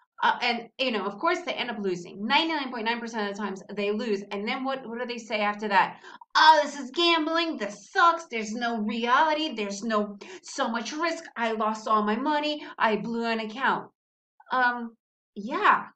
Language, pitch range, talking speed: English, 220-330 Hz, 190 wpm